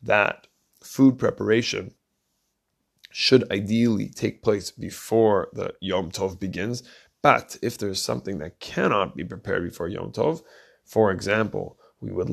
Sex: male